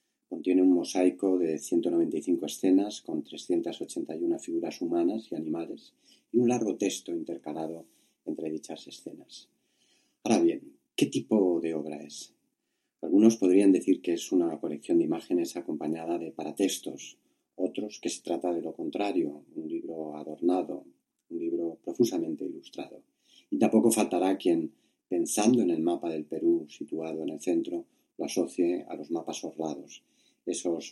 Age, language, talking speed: 40-59, English, 145 wpm